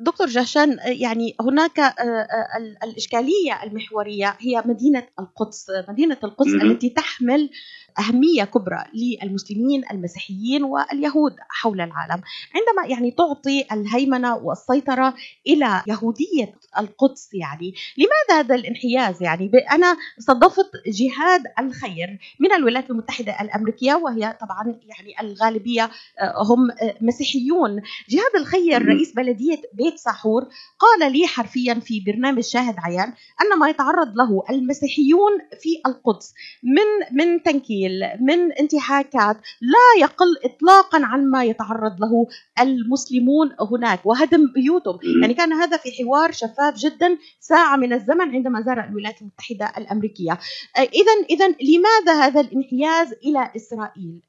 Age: 30-49